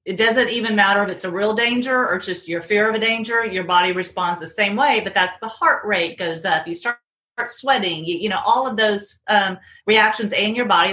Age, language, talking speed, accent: 40-59, English, 235 wpm, American